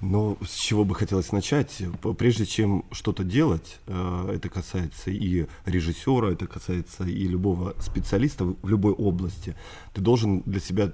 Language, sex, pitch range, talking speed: Russian, male, 90-110 Hz, 145 wpm